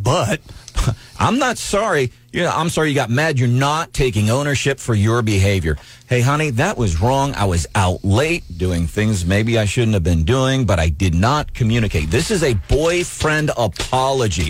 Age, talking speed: 40-59, 180 wpm